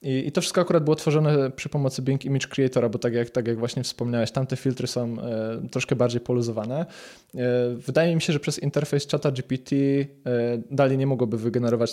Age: 20-39